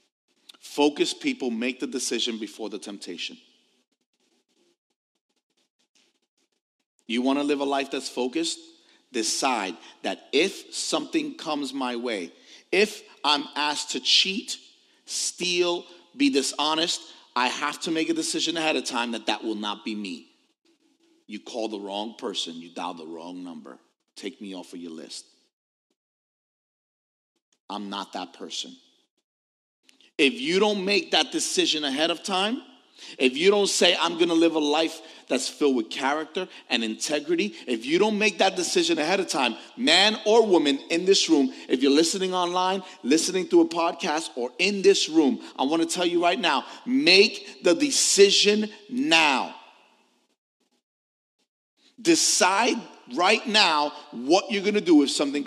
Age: 40-59